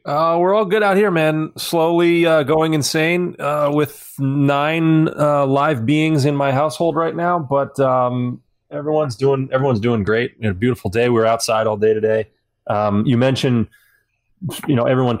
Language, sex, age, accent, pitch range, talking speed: English, male, 30-49, American, 110-130 Hz, 180 wpm